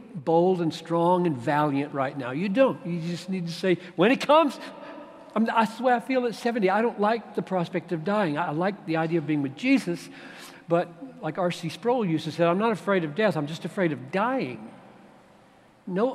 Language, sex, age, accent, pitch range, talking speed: English, male, 60-79, American, 135-185 Hz, 210 wpm